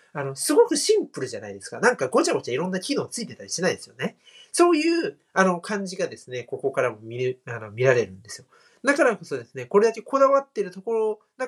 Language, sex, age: Japanese, male, 40-59